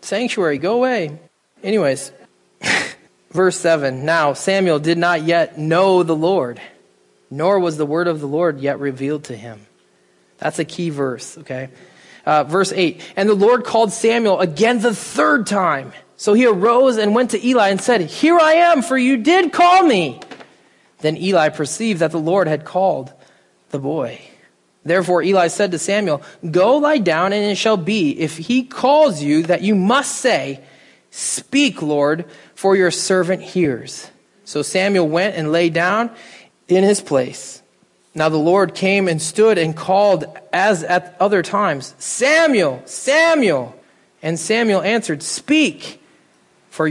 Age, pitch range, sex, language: 20-39, 160-210 Hz, male, English